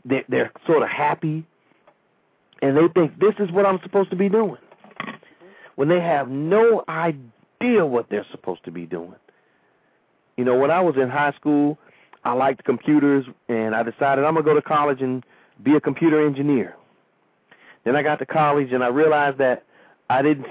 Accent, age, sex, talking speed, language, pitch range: American, 40-59, male, 180 wpm, English, 135-160 Hz